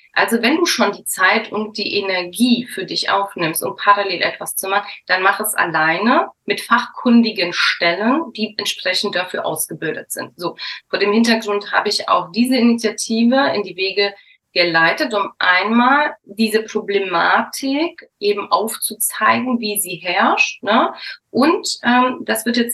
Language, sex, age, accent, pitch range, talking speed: German, female, 30-49, German, 185-240 Hz, 150 wpm